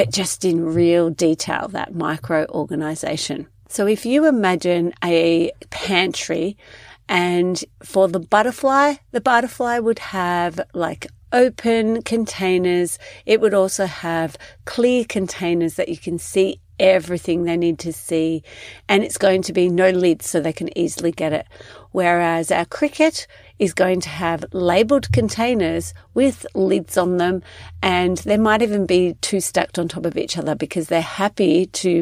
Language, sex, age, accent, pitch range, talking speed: English, female, 40-59, Australian, 165-200 Hz, 150 wpm